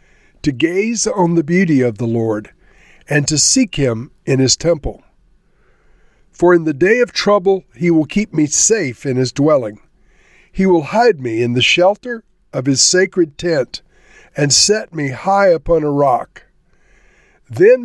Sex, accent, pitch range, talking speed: male, American, 140-190 Hz, 160 wpm